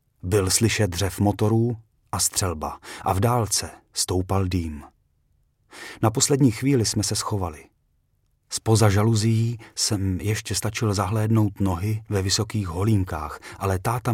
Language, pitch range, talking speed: Czech, 95-115 Hz, 125 wpm